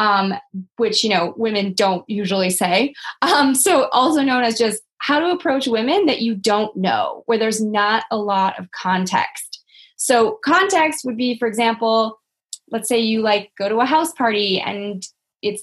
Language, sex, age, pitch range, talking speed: English, female, 20-39, 205-255 Hz, 175 wpm